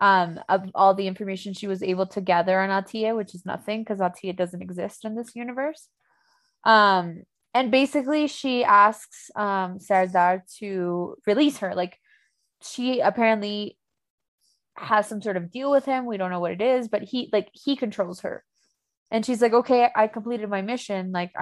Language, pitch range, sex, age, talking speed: English, 190-235 Hz, female, 20-39, 175 wpm